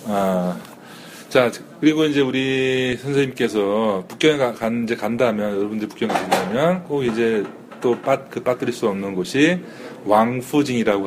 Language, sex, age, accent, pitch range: Korean, male, 40-59, native, 95-125 Hz